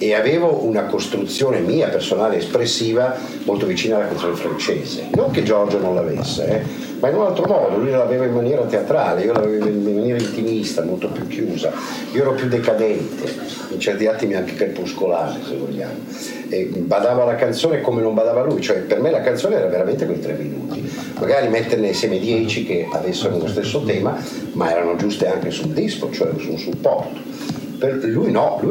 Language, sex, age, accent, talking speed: Italian, male, 50-69, native, 180 wpm